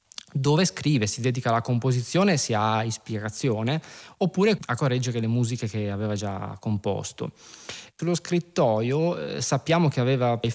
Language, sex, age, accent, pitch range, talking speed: Italian, male, 20-39, native, 115-155 Hz, 135 wpm